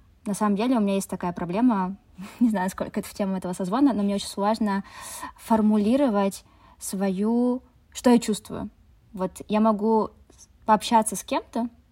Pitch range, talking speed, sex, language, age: 185-225 Hz, 155 wpm, female, Russian, 20-39